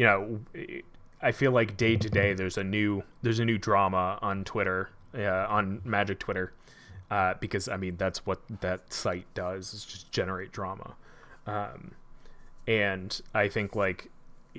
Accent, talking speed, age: American, 160 wpm, 20-39